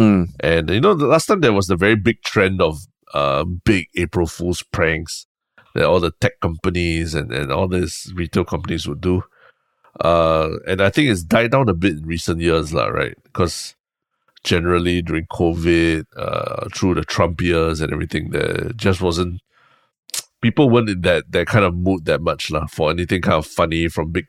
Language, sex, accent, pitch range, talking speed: English, male, Malaysian, 85-100 Hz, 190 wpm